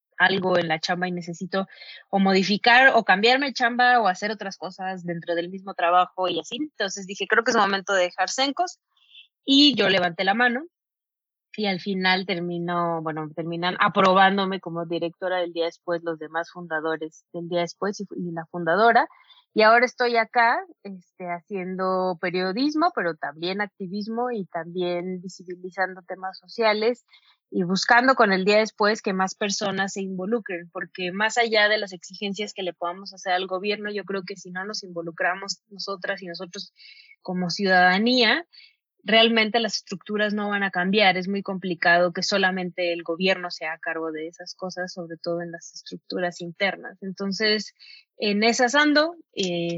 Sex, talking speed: female, 165 wpm